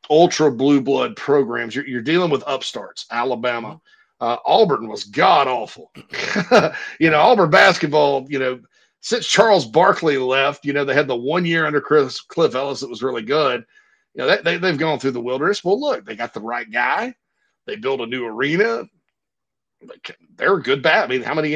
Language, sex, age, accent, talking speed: English, male, 40-59, American, 190 wpm